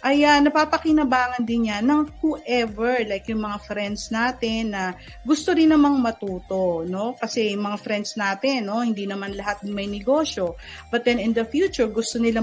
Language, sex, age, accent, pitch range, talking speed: Filipino, female, 40-59, native, 205-280 Hz, 170 wpm